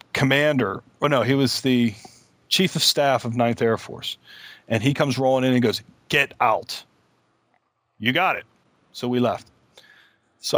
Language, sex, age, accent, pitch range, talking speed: English, male, 40-59, American, 120-140 Hz, 170 wpm